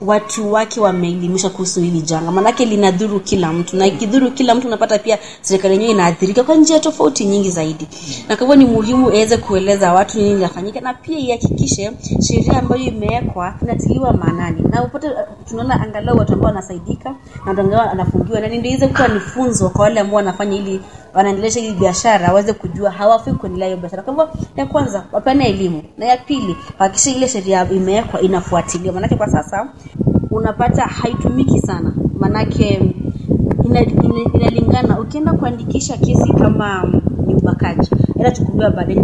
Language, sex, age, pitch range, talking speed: Swahili, female, 20-39, 190-240 Hz, 140 wpm